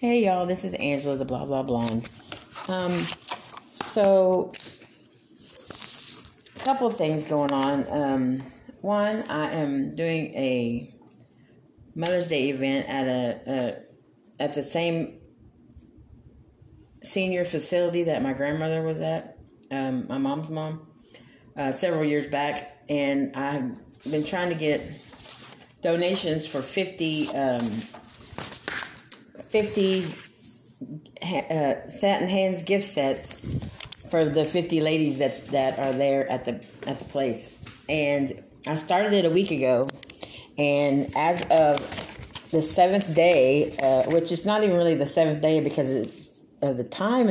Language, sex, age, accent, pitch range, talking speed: English, female, 30-49, American, 135-175 Hz, 130 wpm